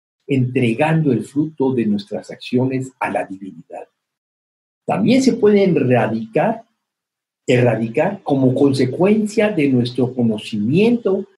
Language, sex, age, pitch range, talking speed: Spanish, male, 50-69, 115-180 Hz, 100 wpm